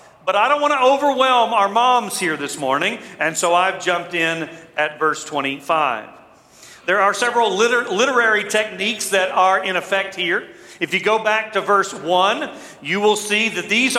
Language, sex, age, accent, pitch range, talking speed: English, male, 40-59, American, 190-255 Hz, 175 wpm